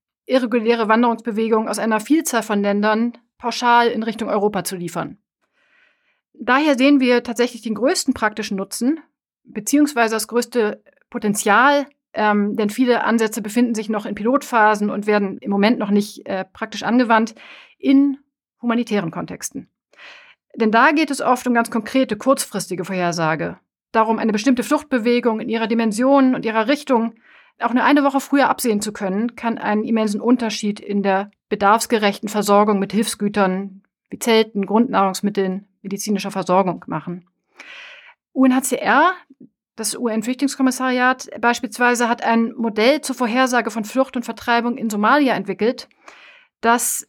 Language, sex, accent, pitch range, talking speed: German, female, German, 215-260 Hz, 140 wpm